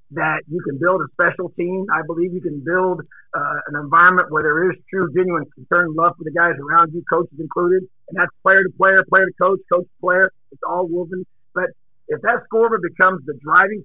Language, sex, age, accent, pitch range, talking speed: English, male, 50-69, American, 165-200 Hz, 220 wpm